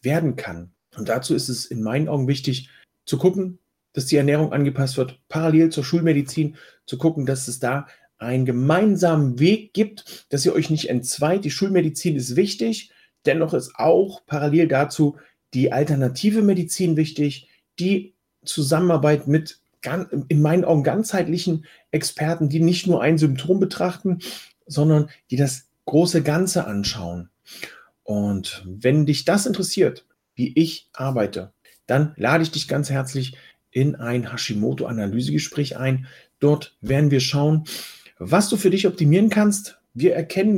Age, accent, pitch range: 40-59, German, 130-175 Hz